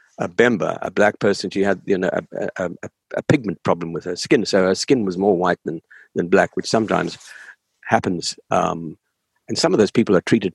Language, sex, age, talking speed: English, male, 60-79, 210 wpm